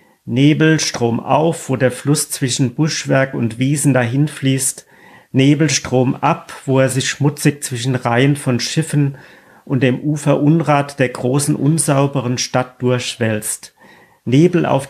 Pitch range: 130-155 Hz